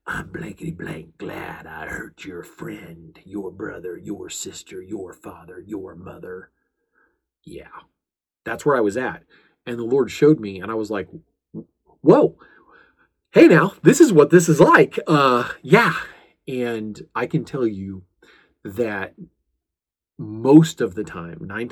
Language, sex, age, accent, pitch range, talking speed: English, male, 40-59, American, 90-110 Hz, 145 wpm